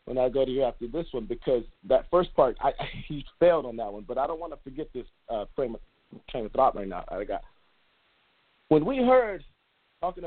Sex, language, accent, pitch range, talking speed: male, English, American, 125-180 Hz, 235 wpm